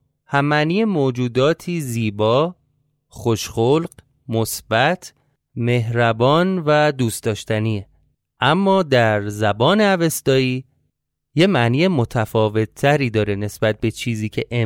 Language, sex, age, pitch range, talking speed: Persian, male, 30-49, 115-155 Hz, 95 wpm